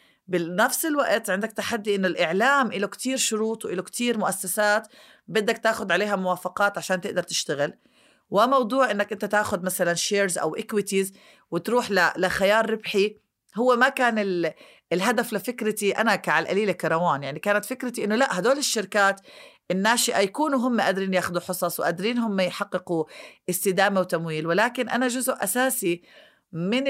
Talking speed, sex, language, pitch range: 135 wpm, female, Arabic, 180-225 Hz